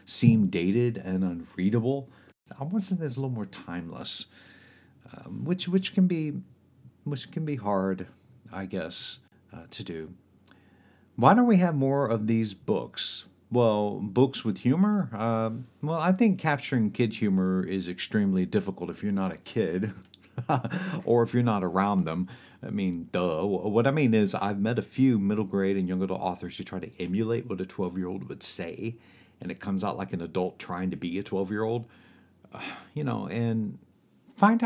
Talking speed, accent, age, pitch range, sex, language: 180 wpm, American, 50-69, 95-145 Hz, male, English